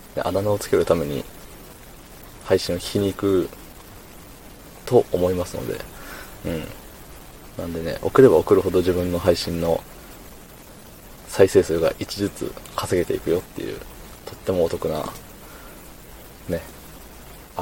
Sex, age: male, 20-39